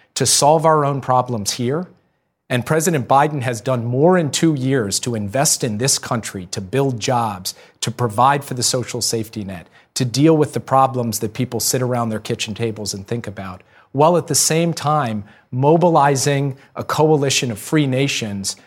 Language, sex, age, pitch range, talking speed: English, male, 40-59, 120-155 Hz, 180 wpm